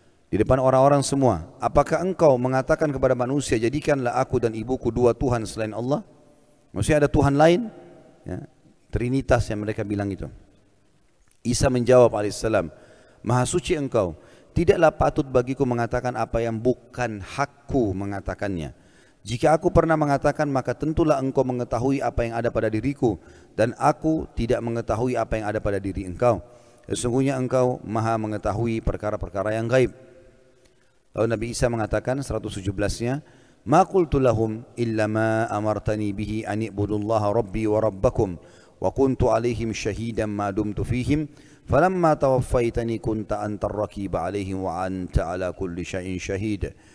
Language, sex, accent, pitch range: Indonesian, male, native, 105-135 Hz